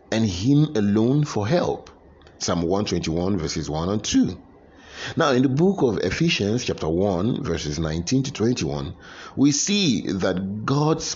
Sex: male